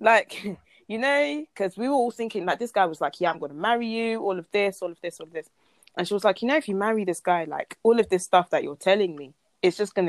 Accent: British